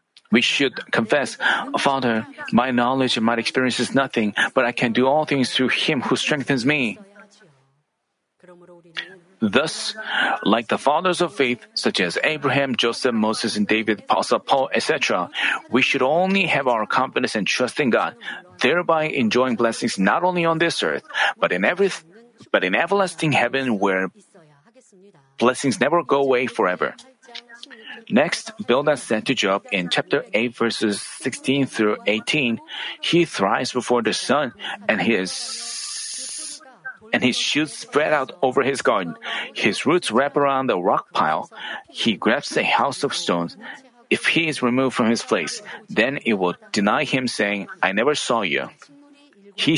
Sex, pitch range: male, 125-200 Hz